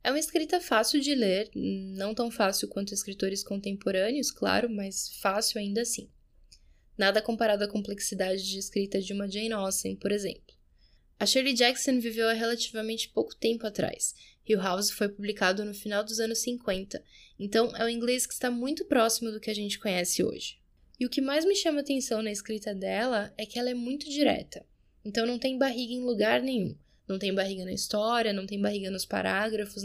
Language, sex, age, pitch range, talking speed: English, female, 10-29, 200-260 Hz, 190 wpm